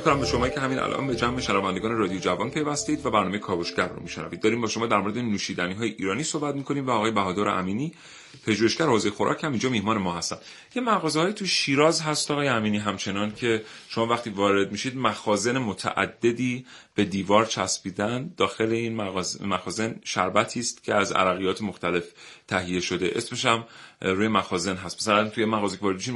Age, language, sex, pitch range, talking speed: 30-49, Persian, male, 100-130 Hz, 170 wpm